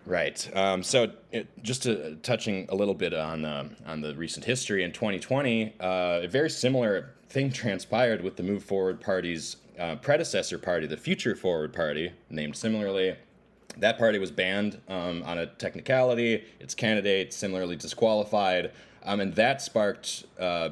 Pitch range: 85-115 Hz